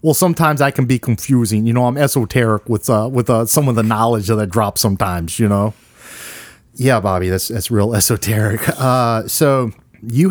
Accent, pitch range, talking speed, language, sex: American, 120-175 Hz, 190 wpm, English, male